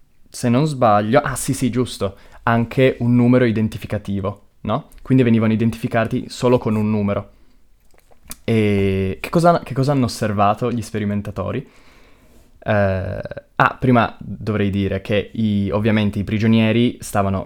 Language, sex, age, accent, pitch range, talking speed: Italian, male, 20-39, native, 100-120 Hz, 125 wpm